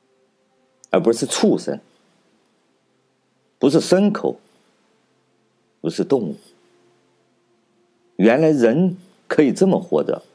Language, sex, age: Chinese, male, 50-69